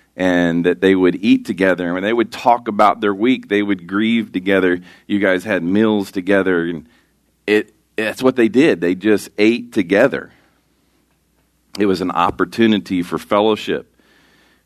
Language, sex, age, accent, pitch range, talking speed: English, male, 40-59, American, 85-110 Hz, 165 wpm